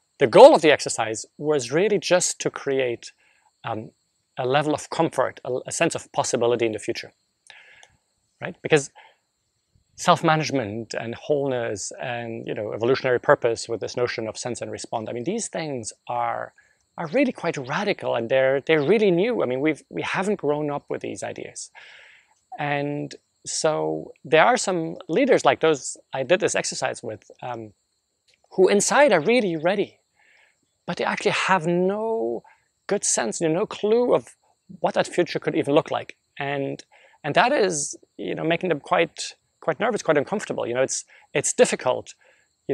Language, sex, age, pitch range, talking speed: English, male, 30-49, 130-190 Hz, 165 wpm